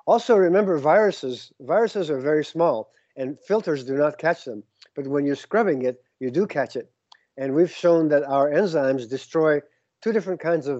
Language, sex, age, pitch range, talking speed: English, male, 50-69, 135-175 Hz, 185 wpm